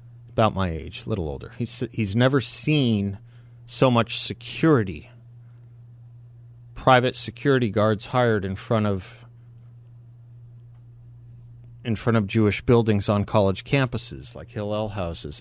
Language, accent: English, American